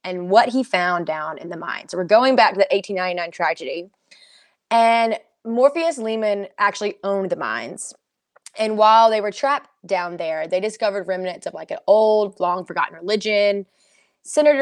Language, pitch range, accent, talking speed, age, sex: English, 180-220 Hz, American, 170 wpm, 20-39, female